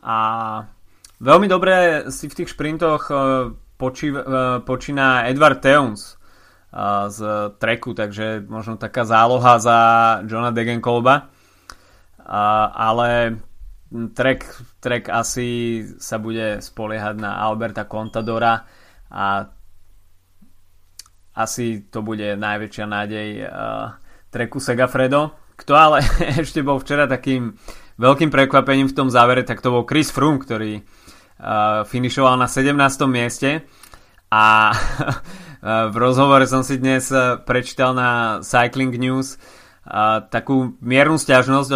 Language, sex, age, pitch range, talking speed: Slovak, male, 20-39, 110-130 Hz, 105 wpm